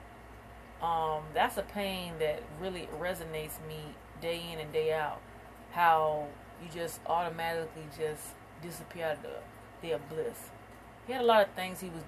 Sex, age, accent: female, 30-49, American